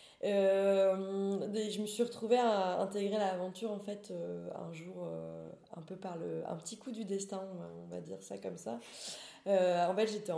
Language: French